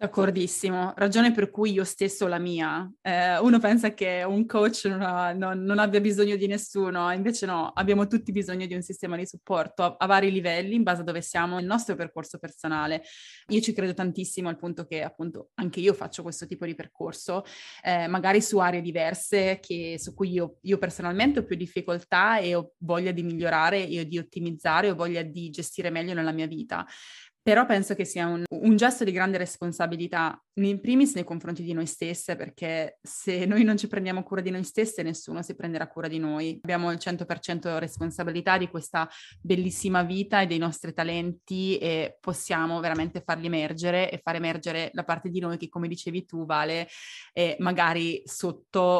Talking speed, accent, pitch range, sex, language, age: 190 wpm, native, 170-190 Hz, female, Italian, 20-39